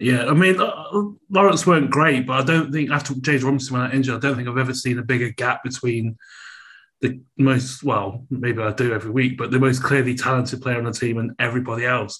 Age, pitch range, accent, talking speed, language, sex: 30-49, 120-140 Hz, British, 225 wpm, English, male